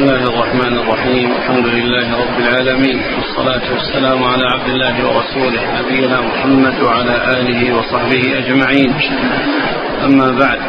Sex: male